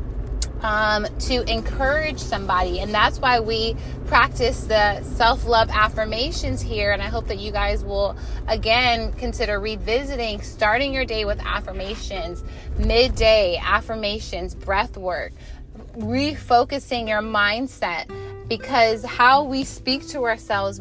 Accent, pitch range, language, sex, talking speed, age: American, 205-245 Hz, English, female, 120 wpm, 20-39